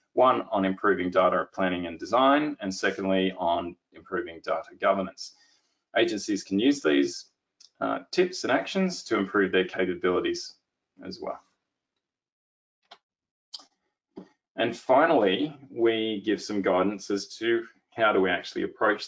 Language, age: English, 20-39